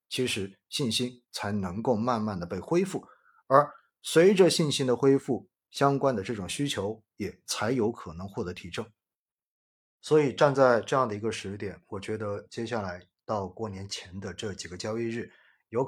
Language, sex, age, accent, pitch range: Chinese, male, 20-39, native, 105-130 Hz